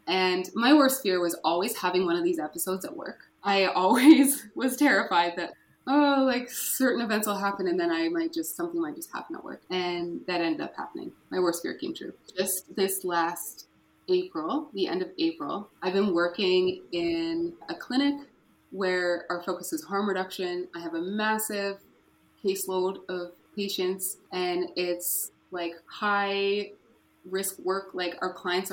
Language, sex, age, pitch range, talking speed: English, female, 20-39, 180-285 Hz, 170 wpm